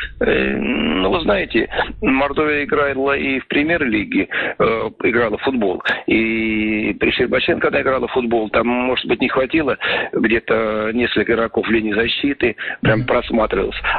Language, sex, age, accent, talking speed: Russian, male, 40-59, native, 135 wpm